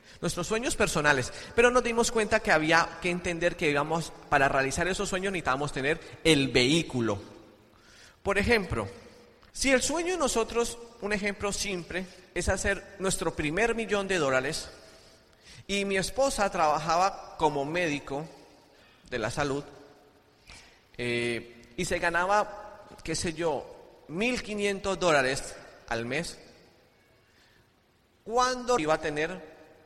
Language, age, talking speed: Spanish, 40-59, 125 wpm